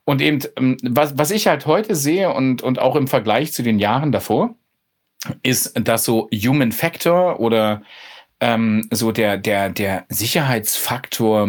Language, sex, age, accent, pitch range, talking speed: German, male, 40-59, German, 105-125 Hz, 150 wpm